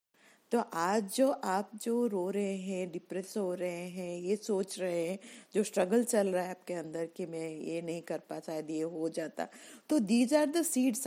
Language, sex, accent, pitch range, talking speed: Hindi, female, native, 190-275 Hz, 195 wpm